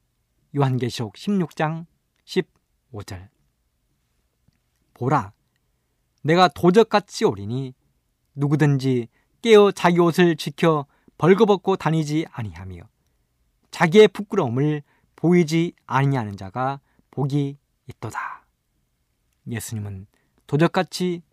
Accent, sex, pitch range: native, male, 115-180 Hz